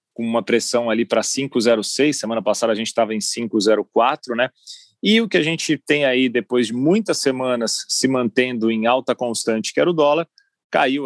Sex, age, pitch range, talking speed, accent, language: male, 30-49, 110-130 Hz, 190 wpm, Brazilian, Portuguese